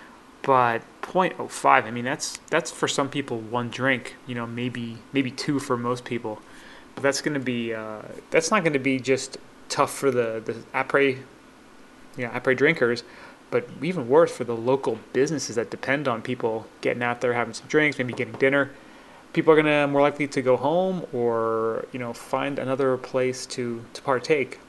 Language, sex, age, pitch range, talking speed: English, male, 30-49, 125-165 Hz, 180 wpm